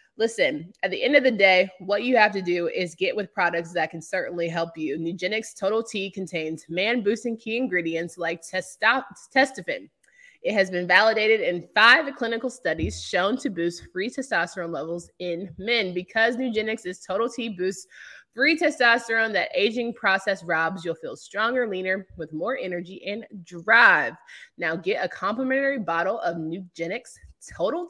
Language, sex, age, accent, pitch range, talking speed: English, female, 20-39, American, 175-230 Hz, 160 wpm